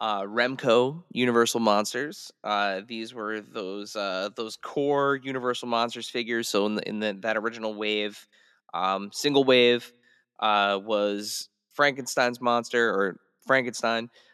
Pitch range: 105-125 Hz